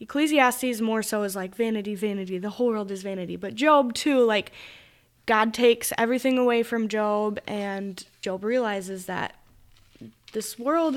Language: English